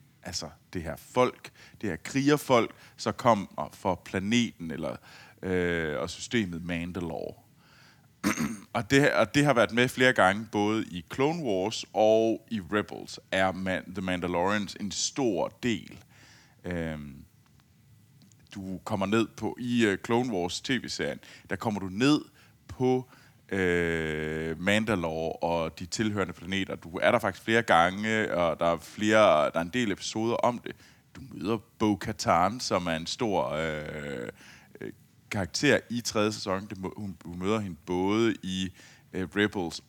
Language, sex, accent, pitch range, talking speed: Danish, male, native, 90-120 Hz, 140 wpm